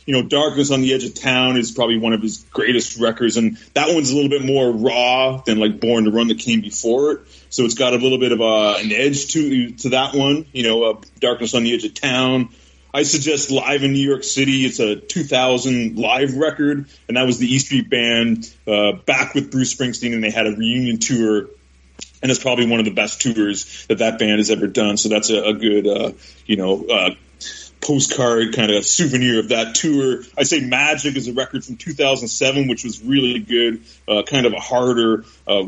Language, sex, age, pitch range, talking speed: English, male, 30-49, 110-130 Hz, 225 wpm